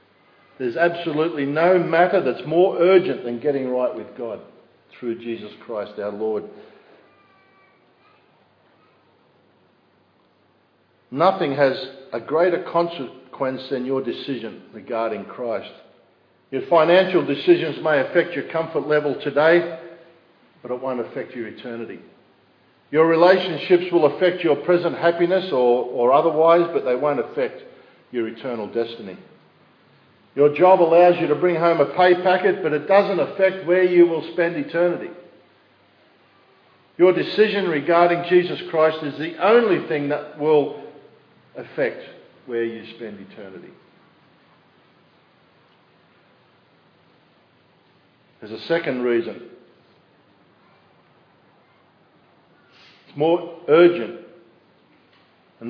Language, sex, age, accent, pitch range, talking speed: English, male, 50-69, Australian, 135-175 Hz, 110 wpm